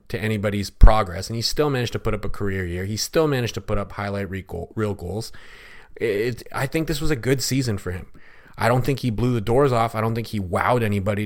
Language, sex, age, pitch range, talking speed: English, male, 30-49, 100-115 Hz, 250 wpm